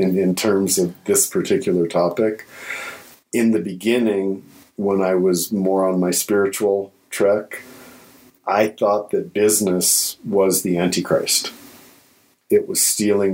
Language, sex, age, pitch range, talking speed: English, male, 50-69, 90-110 Hz, 125 wpm